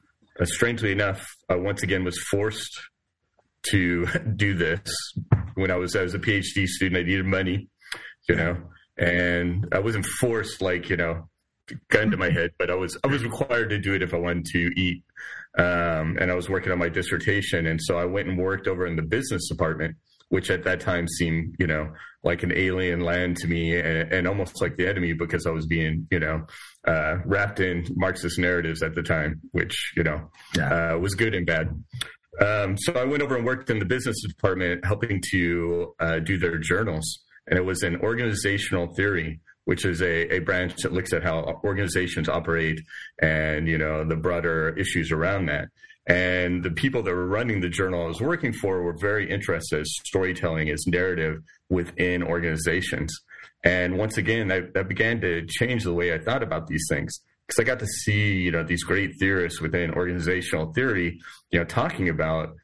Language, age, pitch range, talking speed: English, 30-49, 85-100 Hz, 195 wpm